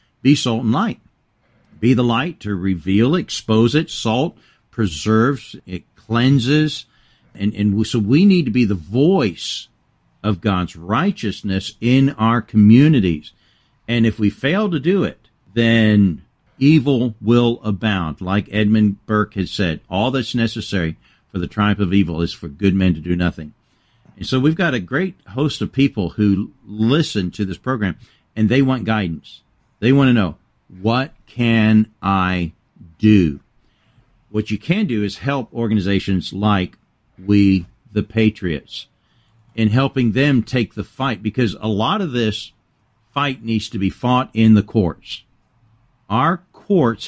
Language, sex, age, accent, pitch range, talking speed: English, male, 50-69, American, 95-120 Hz, 155 wpm